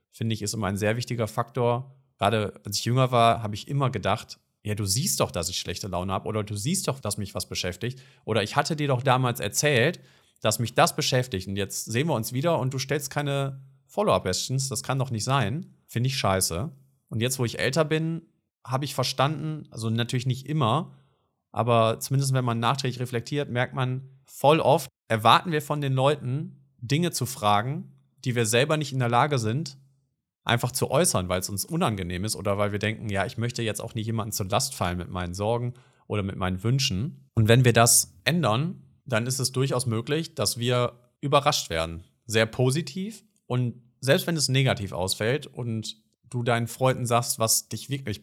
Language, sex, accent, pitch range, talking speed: German, male, German, 110-140 Hz, 200 wpm